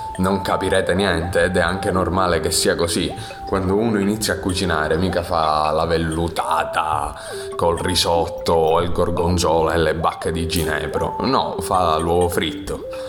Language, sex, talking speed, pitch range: Italian, male, 145 wpm, 80-110 Hz